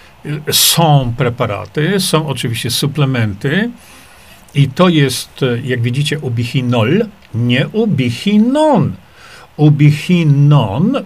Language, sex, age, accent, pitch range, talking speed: Polish, male, 50-69, native, 125-170 Hz, 75 wpm